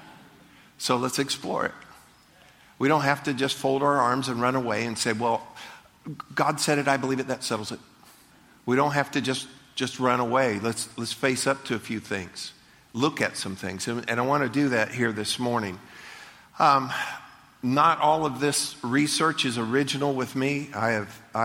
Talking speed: 195 wpm